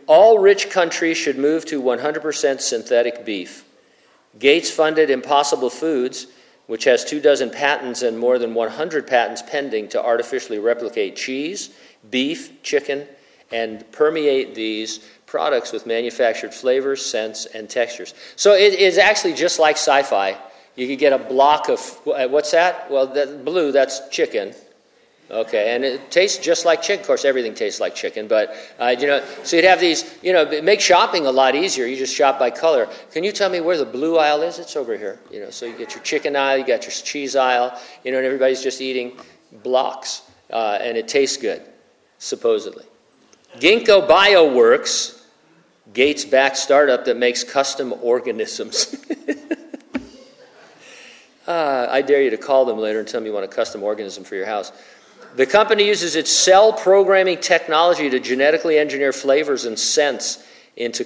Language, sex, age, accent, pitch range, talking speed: English, male, 50-69, American, 130-210 Hz, 170 wpm